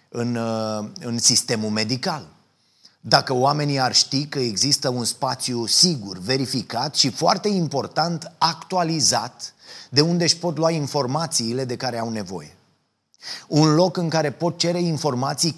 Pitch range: 120-165 Hz